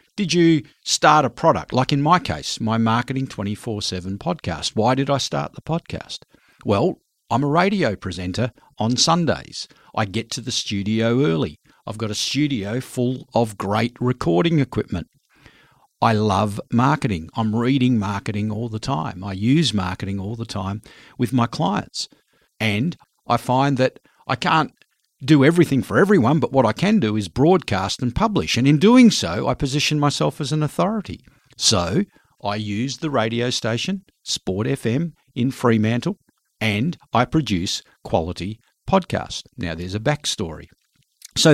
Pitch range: 110-150 Hz